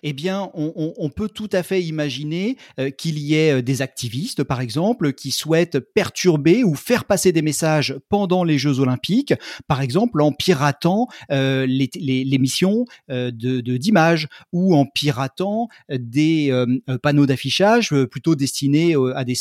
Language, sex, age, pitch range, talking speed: French, male, 40-59, 135-180 Hz, 170 wpm